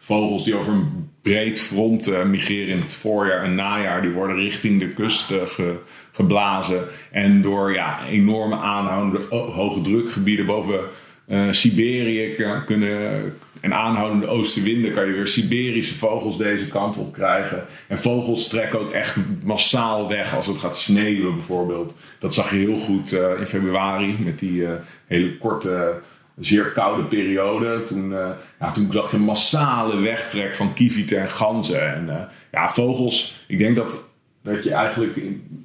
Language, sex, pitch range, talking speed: Dutch, male, 95-110 Hz, 155 wpm